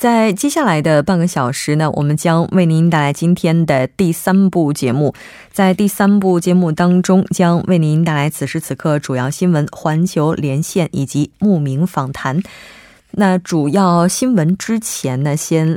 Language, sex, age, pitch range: Korean, female, 20-39, 145-185 Hz